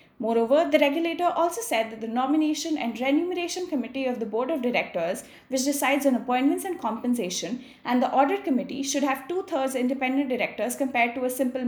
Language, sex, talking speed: English, female, 180 wpm